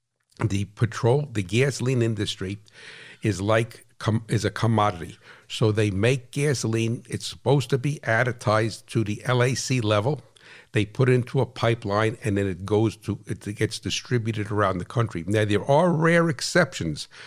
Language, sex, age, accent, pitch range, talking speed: English, male, 60-79, American, 105-125 Hz, 160 wpm